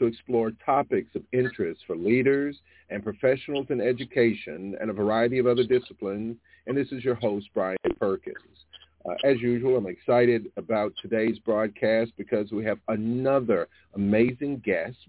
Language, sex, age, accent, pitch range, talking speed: English, male, 50-69, American, 105-125 Hz, 150 wpm